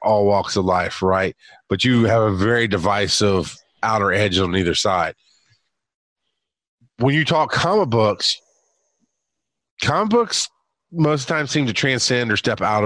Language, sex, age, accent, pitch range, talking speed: English, male, 30-49, American, 105-155 Hz, 145 wpm